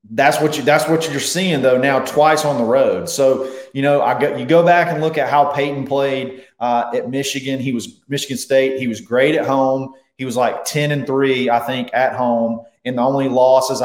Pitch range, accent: 120-145 Hz, American